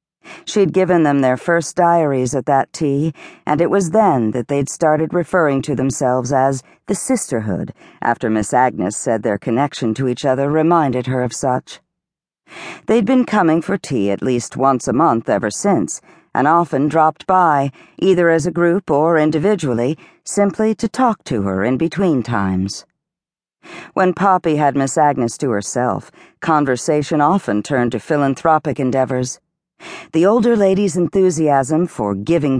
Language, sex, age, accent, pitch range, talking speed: English, female, 50-69, American, 130-180 Hz, 155 wpm